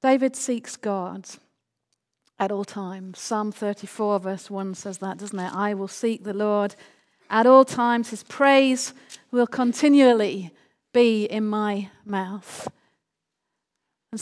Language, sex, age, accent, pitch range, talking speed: English, female, 40-59, British, 215-285 Hz, 135 wpm